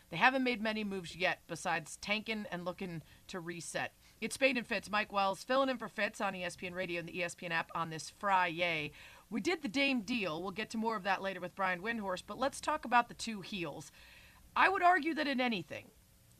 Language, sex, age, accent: English, female, 40-59, American